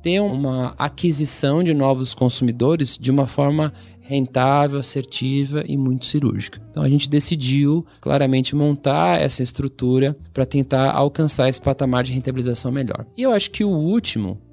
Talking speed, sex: 150 wpm, male